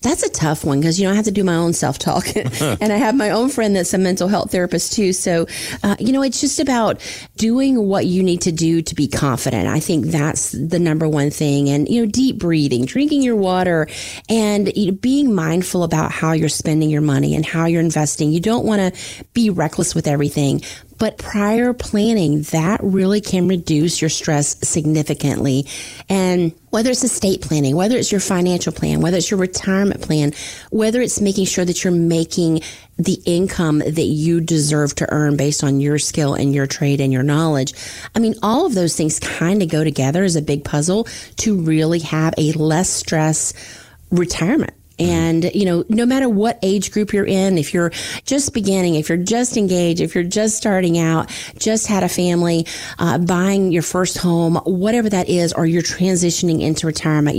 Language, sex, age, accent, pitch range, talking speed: English, female, 30-49, American, 155-195 Hz, 200 wpm